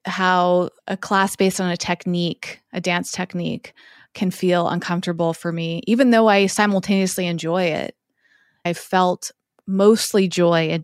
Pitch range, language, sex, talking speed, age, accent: 180-225 Hz, English, female, 145 wpm, 20-39, American